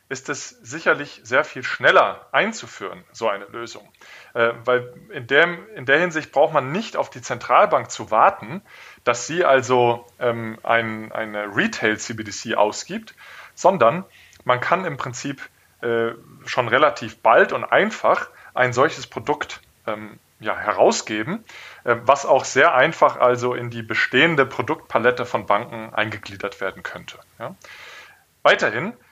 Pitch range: 115-140 Hz